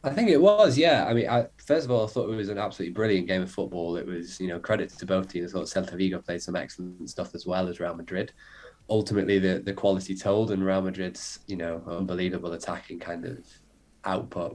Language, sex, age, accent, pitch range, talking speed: English, male, 20-39, British, 95-110 Hz, 235 wpm